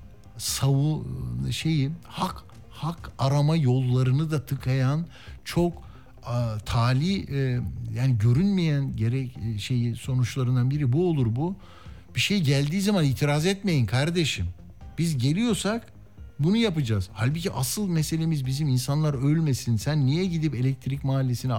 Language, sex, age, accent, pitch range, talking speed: Turkish, male, 60-79, native, 115-160 Hz, 120 wpm